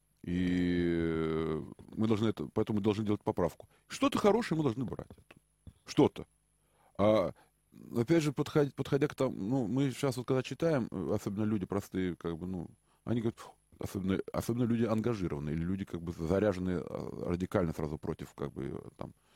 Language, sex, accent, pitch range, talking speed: Russian, male, native, 80-115 Hz, 160 wpm